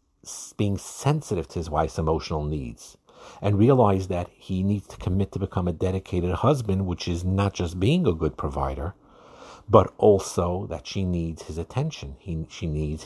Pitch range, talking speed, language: 80-105 Hz, 170 wpm, English